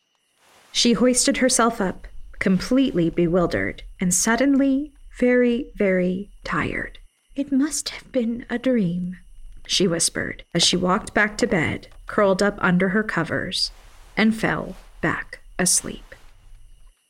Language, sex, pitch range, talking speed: English, female, 180-240 Hz, 120 wpm